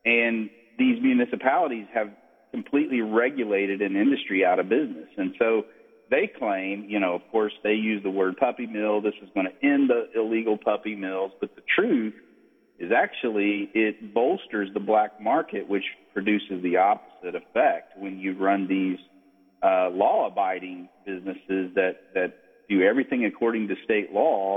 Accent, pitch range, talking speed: American, 95-115 Hz, 160 wpm